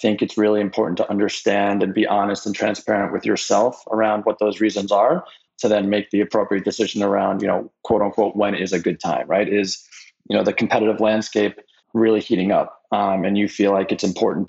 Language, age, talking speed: English, 20-39, 210 wpm